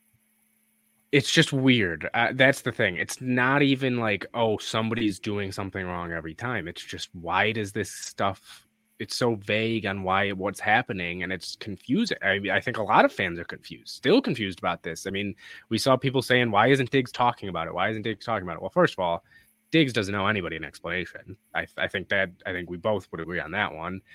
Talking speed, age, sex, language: 220 wpm, 20-39, male, English